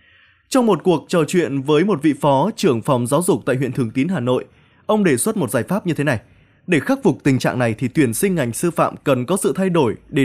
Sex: male